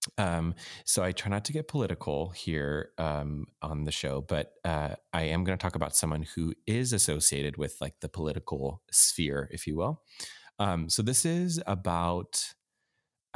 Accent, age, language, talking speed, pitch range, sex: American, 30-49, English, 175 wpm, 75-95 Hz, male